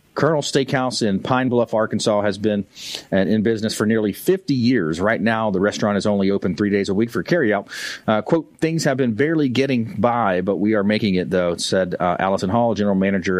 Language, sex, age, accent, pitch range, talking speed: English, male, 40-59, American, 100-130 Hz, 210 wpm